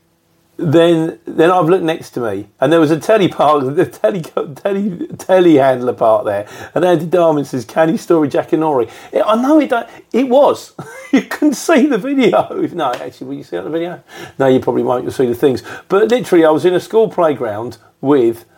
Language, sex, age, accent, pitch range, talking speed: English, male, 40-59, British, 140-200 Hz, 205 wpm